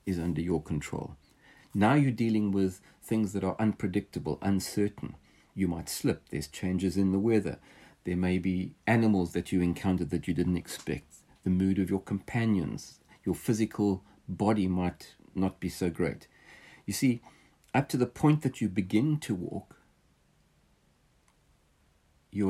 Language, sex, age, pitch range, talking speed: English, male, 50-69, 90-115 Hz, 150 wpm